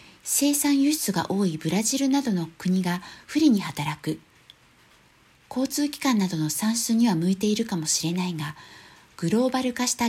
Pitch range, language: 175-255 Hz, Japanese